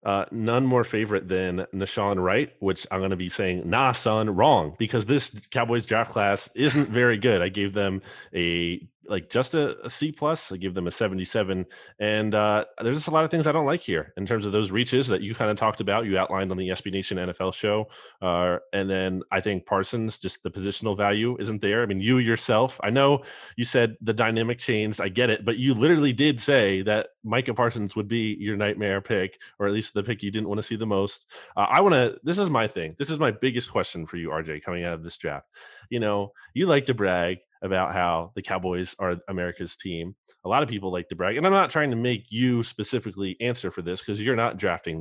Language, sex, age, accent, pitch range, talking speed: English, male, 30-49, American, 95-120 Hz, 235 wpm